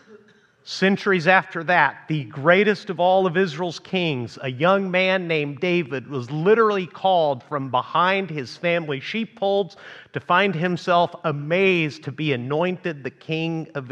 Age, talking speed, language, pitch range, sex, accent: 50-69, 140 wpm, English, 150-200 Hz, male, American